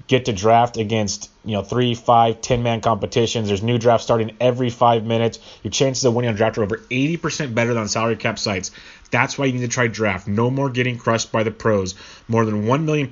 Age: 30-49